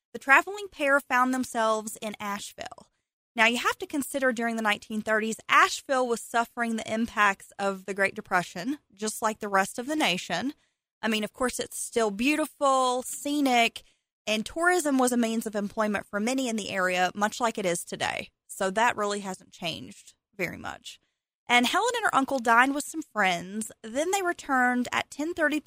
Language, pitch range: English, 200-250 Hz